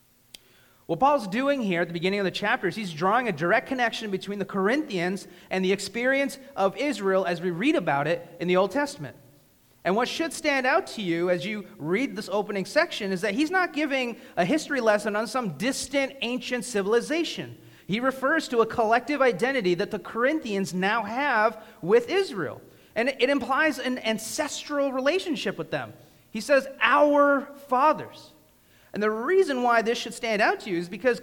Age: 30-49